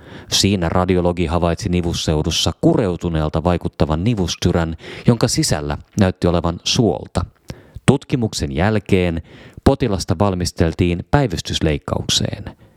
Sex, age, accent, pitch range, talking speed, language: male, 30-49, native, 80-110 Hz, 80 wpm, Finnish